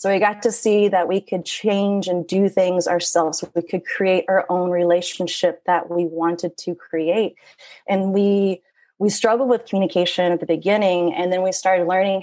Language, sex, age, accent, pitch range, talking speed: English, female, 30-49, American, 175-200 Hz, 185 wpm